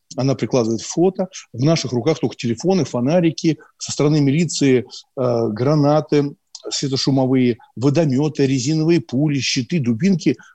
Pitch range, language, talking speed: 125-160 Hz, Russian, 115 wpm